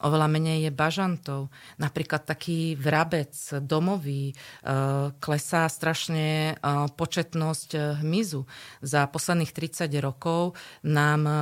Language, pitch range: Slovak, 145-170 Hz